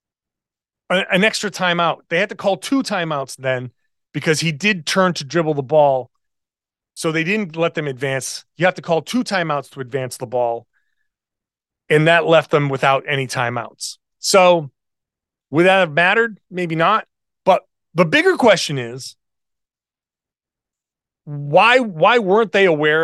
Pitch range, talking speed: 150-210 Hz, 150 wpm